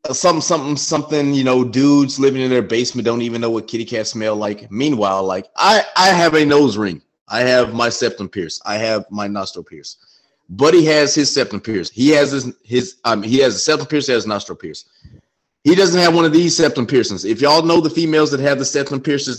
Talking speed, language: 230 wpm, English